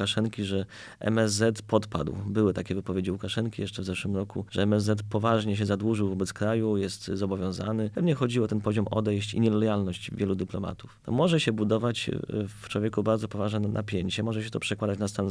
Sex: male